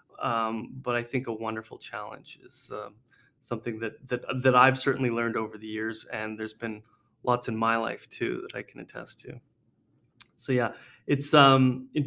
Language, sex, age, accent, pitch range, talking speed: English, male, 30-49, American, 115-135 Hz, 185 wpm